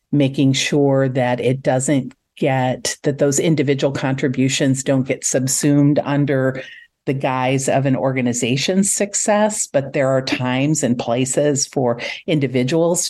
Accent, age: American, 50-69